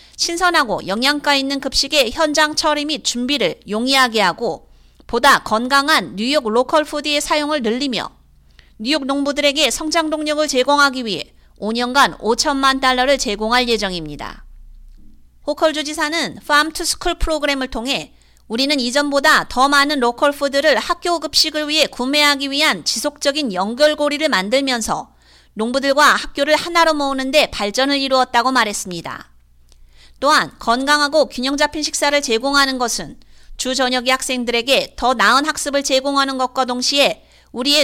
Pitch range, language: 235-300 Hz, Korean